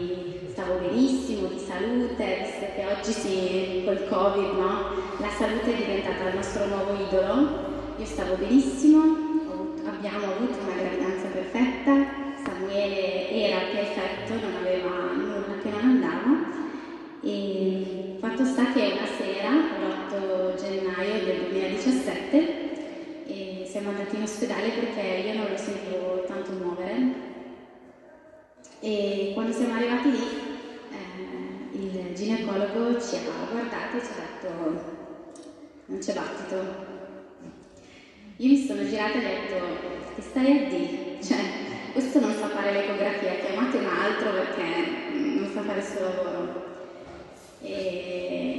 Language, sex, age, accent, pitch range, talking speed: Italian, female, 20-39, native, 190-270 Hz, 130 wpm